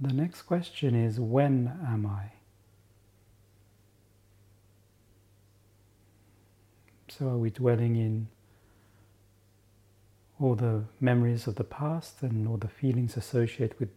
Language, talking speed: English, 105 wpm